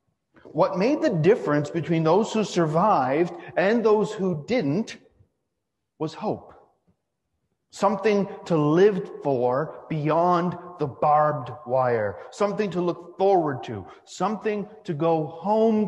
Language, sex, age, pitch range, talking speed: English, male, 40-59, 135-195 Hz, 115 wpm